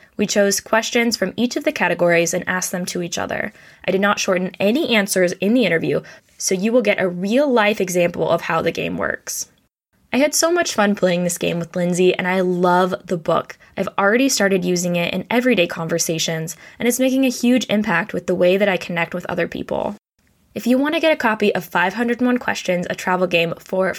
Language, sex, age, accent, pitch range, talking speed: English, female, 10-29, American, 180-245 Hz, 220 wpm